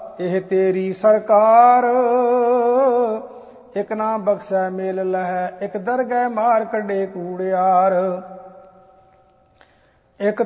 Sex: male